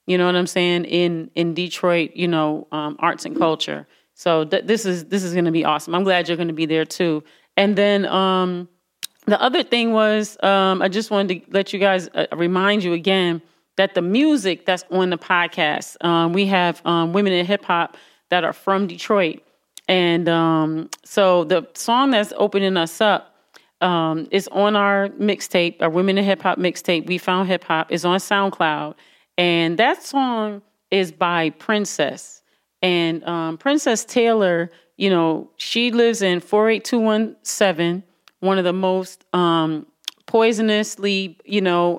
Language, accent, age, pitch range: English, American, 30-49, 170-200 Hz